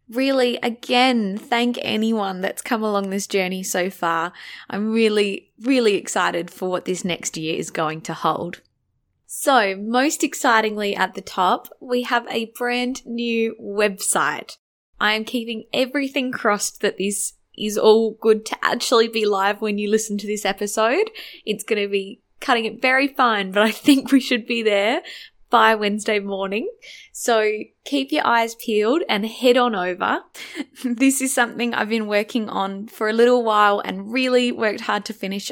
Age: 10-29